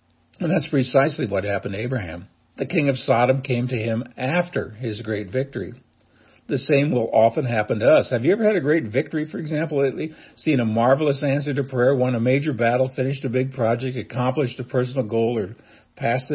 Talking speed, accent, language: 200 wpm, American, English